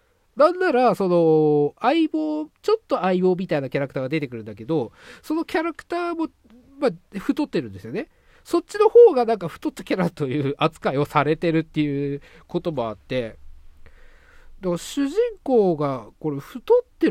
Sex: male